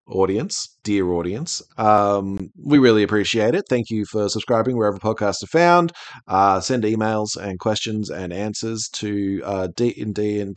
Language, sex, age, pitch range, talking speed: English, male, 30-49, 90-120 Hz, 160 wpm